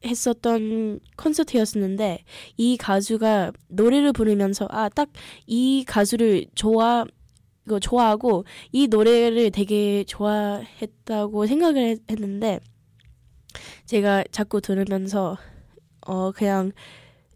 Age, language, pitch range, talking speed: 10-29, English, 190-235 Hz, 80 wpm